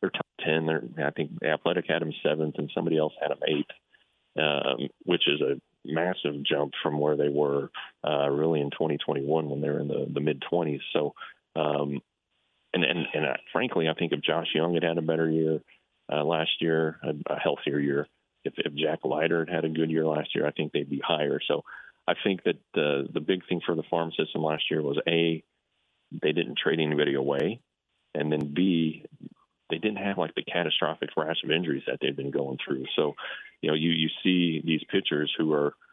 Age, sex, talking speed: 30-49, male, 205 wpm